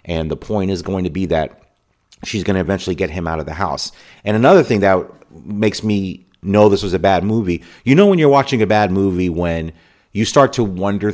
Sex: male